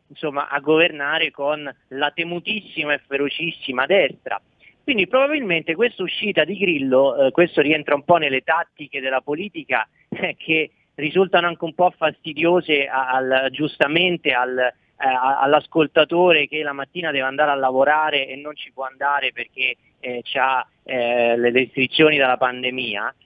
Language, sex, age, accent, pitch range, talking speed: Italian, male, 40-59, native, 140-185 Hz, 145 wpm